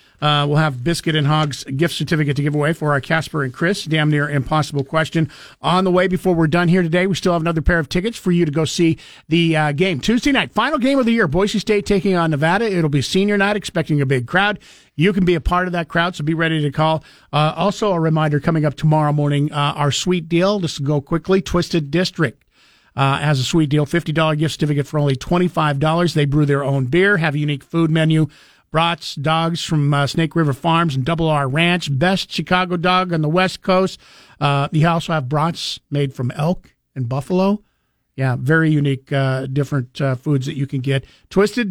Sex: male